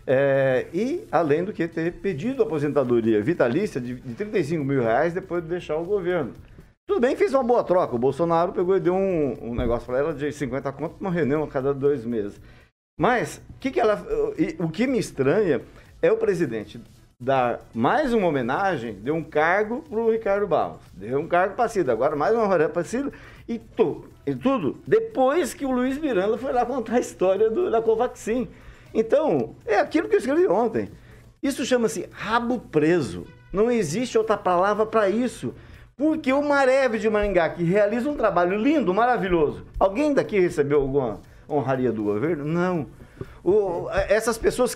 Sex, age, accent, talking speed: male, 50-69, Brazilian, 180 wpm